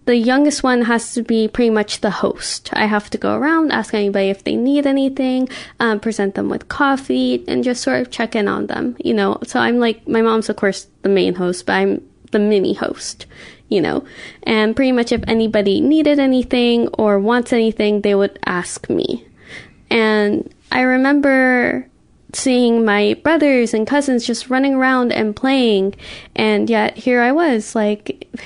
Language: English